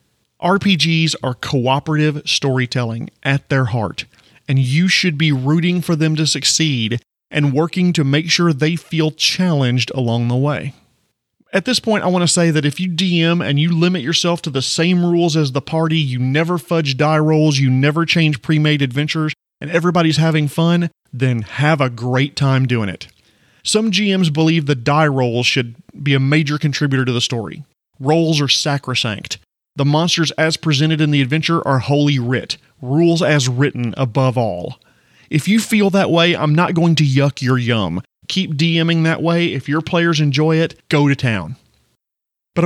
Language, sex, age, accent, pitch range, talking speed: English, male, 30-49, American, 130-165 Hz, 180 wpm